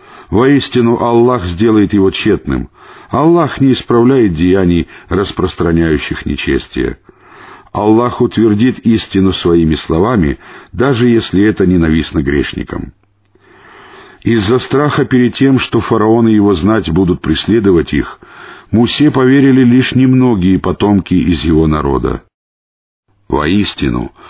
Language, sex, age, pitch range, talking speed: Russian, male, 50-69, 85-120 Hz, 100 wpm